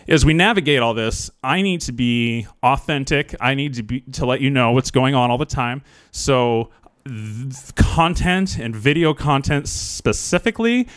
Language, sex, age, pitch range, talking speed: English, male, 30-49, 115-145 Hz, 170 wpm